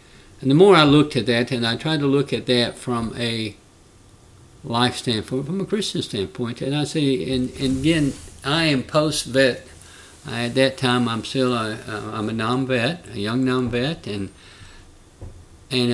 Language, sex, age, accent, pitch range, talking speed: English, male, 60-79, American, 110-135 Hz, 175 wpm